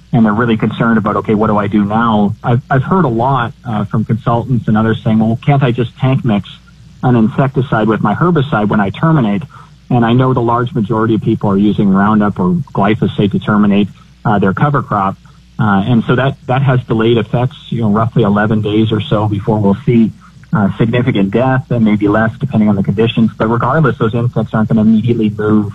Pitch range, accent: 105-125 Hz, American